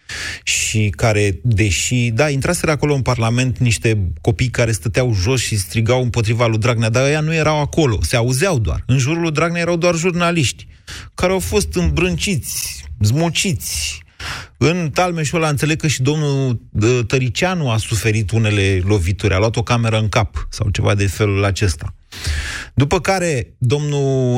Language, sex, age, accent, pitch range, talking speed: Romanian, male, 30-49, native, 105-140 Hz, 160 wpm